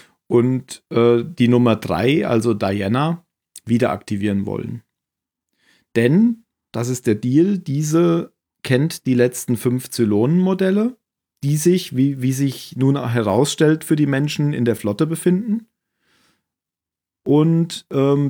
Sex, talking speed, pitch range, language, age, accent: male, 120 wpm, 115-145 Hz, German, 40-59, German